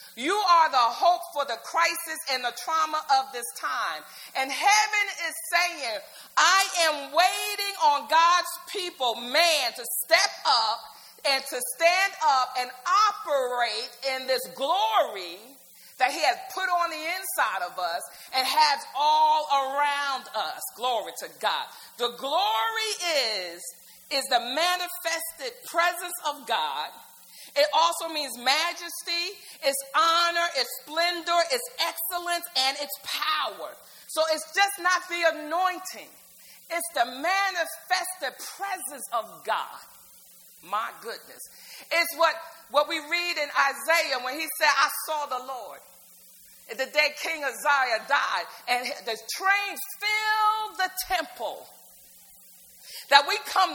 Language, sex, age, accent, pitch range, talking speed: English, female, 40-59, American, 270-360 Hz, 130 wpm